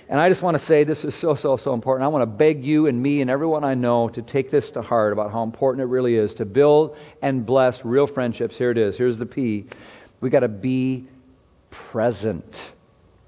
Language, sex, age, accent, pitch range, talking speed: English, male, 50-69, American, 115-160 Hz, 230 wpm